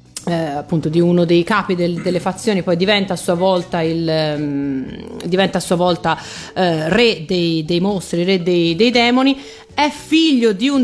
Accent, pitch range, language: native, 170-220 Hz, Italian